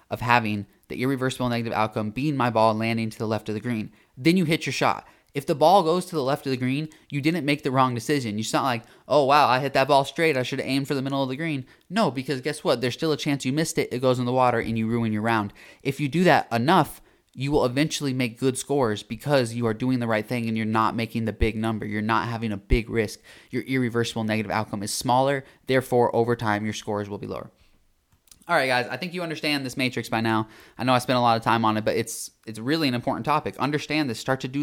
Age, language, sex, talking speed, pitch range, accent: 20-39, English, male, 270 wpm, 115-150 Hz, American